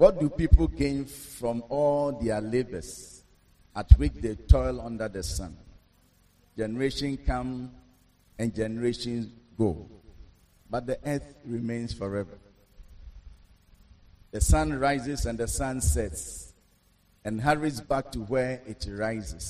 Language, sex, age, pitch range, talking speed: English, male, 50-69, 90-130 Hz, 120 wpm